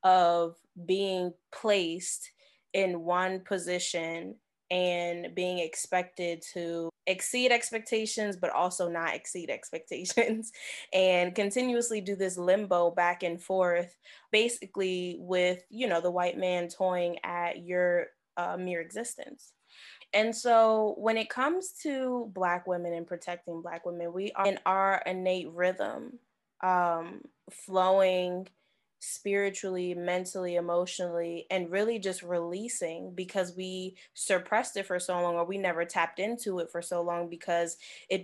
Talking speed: 130 wpm